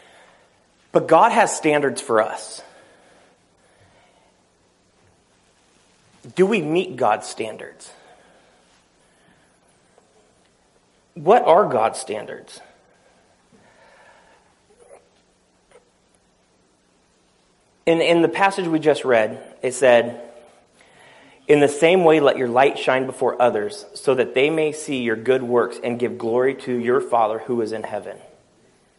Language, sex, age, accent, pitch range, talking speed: English, male, 30-49, American, 115-145 Hz, 110 wpm